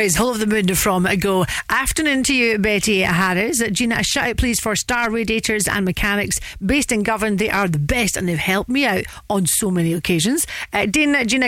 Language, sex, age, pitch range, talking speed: English, female, 40-59, 190-240 Hz, 210 wpm